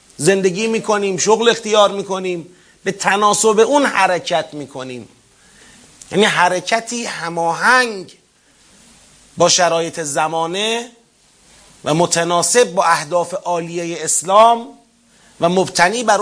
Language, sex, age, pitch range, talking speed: Persian, male, 30-49, 165-215 Hz, 100 wpm